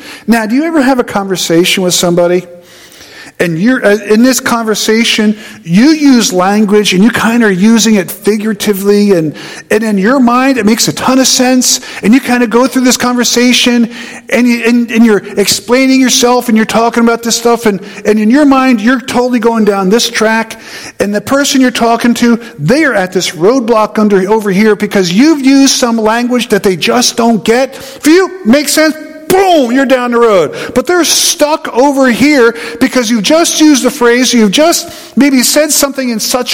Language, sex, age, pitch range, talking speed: English, male, 50-69, 215-270 Hz, 195 wpm